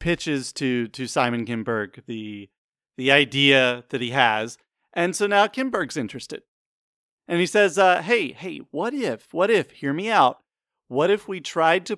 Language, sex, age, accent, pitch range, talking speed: English, male, 40-59, American, 140-175 Hz, 170 wpm